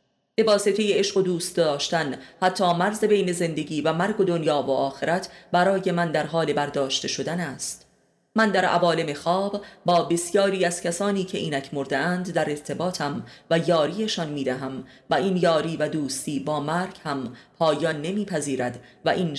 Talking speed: 165 wpm